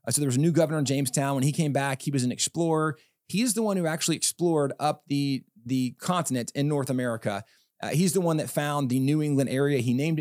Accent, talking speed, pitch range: American, 240 wpm, 140-175 Hz